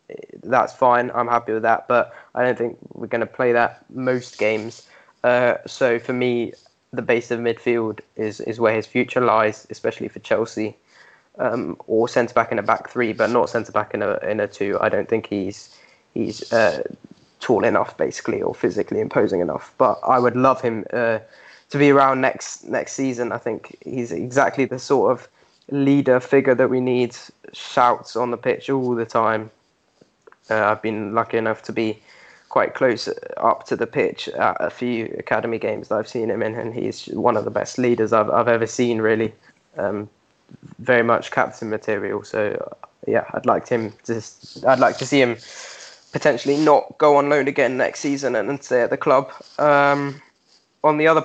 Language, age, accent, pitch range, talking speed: English, 10-29, British, 115-140 Hz, 190 wpm